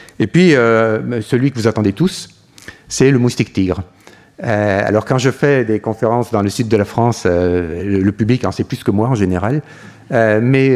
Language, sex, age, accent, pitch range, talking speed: French, male, 50-69, French, 105-130 Hz, 210 wpm